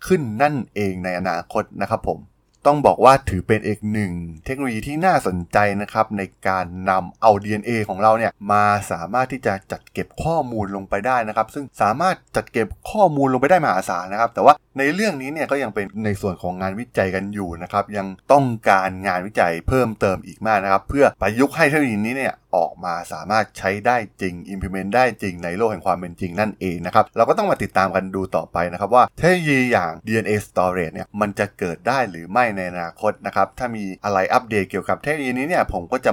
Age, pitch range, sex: 20-39, 95-115 Hz, male